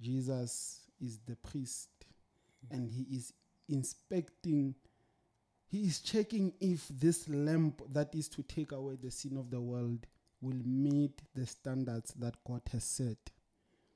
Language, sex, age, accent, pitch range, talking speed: English, male, 30-49, Nigerian, 120-155 Hz, 140 wpm